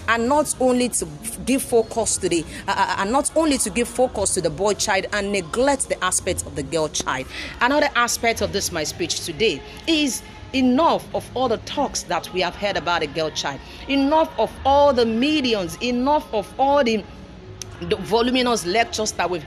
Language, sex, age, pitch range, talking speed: English, female, 40-59, 180-255 Hz, 190 wpm